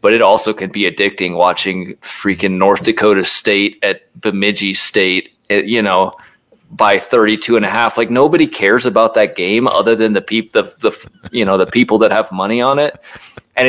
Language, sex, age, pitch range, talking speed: English, male, 30-49, 90-110 Hz, 195 wpm